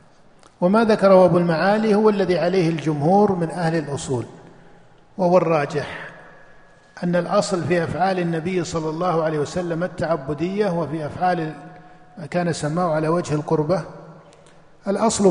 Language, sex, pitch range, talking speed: Arabic, male, 165-200 Hz, 125 wpm